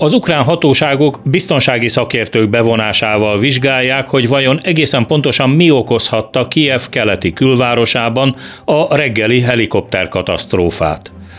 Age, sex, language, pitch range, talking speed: 40-59, male, Hungarian, 110-135 Hz, 100 wpm